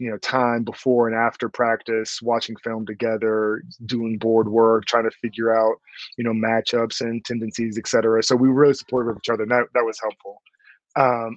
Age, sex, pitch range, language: 20-39, male, 115-130 Hz, English